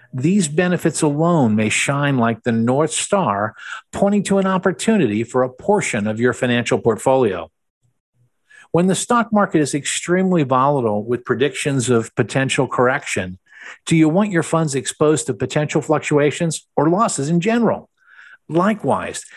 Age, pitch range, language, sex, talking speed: 50-69, 125-175 Hz, English, male, 145 wpm